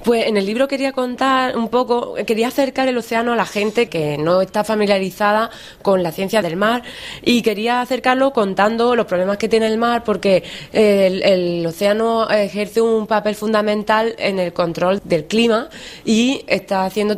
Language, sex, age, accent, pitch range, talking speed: Spanish, female, 20-39, Spanish, 185-225 Hz, 175 wpm